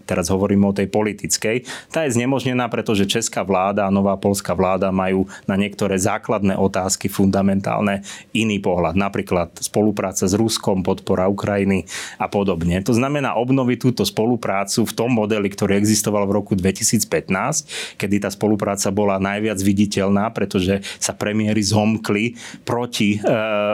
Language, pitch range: Slovak, 100-110 Hz